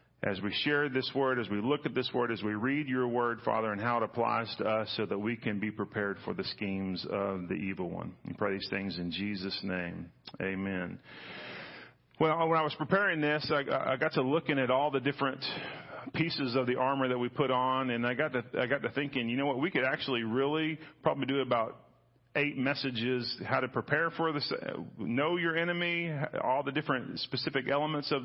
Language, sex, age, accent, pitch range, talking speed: English, male, 40-59, American, 110-140 Hz, 210 wpm